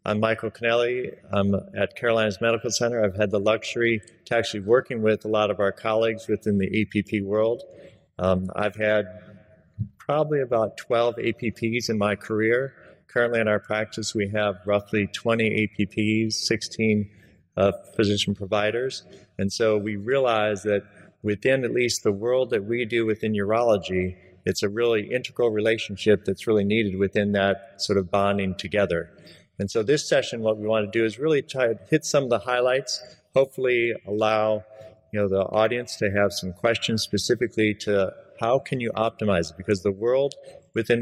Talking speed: 170 wpm